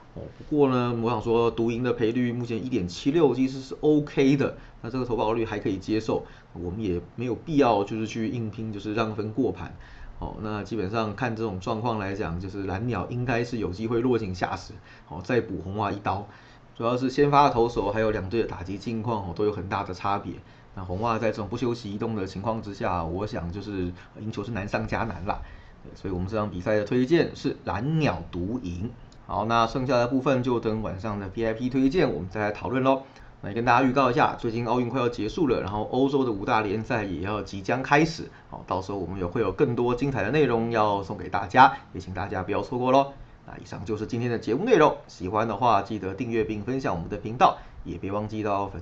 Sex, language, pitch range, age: male, Chinese, 100-120 Hz, 20-39